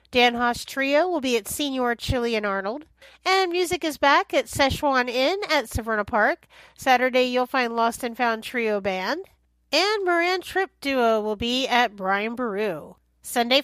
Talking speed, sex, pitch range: 160 wpm, female, 230-315 Hz